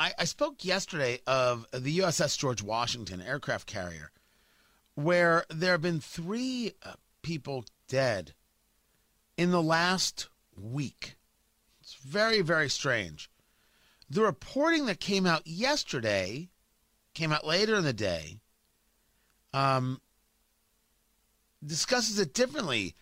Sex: male